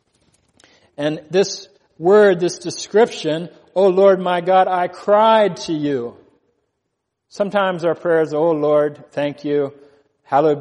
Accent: American